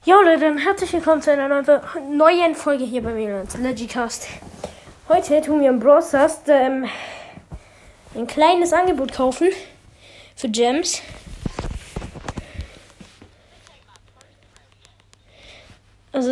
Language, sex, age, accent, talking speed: German, female, 20-39, German, 95 wpm